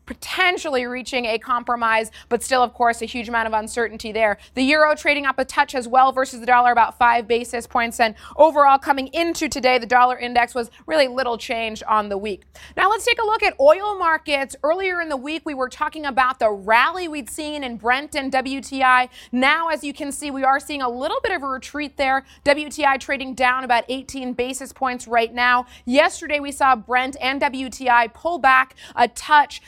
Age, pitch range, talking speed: 30-49, 245-295 Hz, 205 wpm